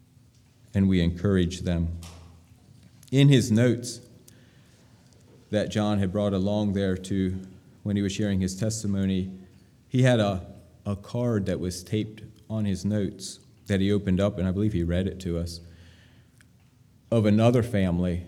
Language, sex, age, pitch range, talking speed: English, male, 30-49, 90-110 Hz, 150 wpm